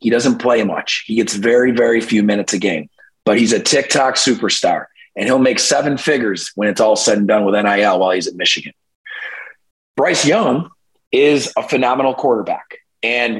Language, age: English, 30-49